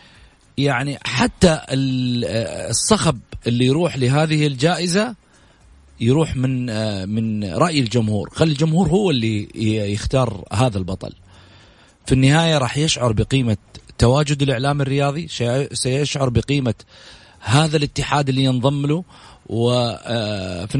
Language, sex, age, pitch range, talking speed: English, male, 40-59, 120-160 Hz, 100 wpm